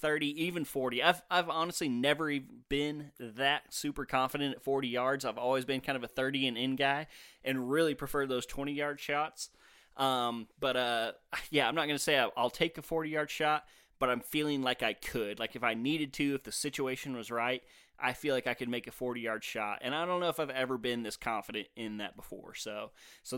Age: 20-39